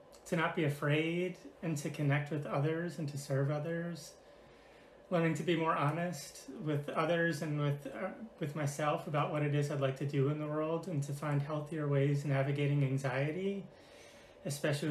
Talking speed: 175 wpm